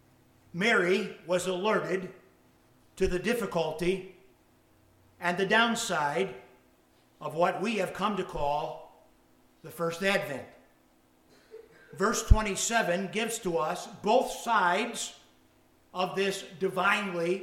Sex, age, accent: male, 60-79, American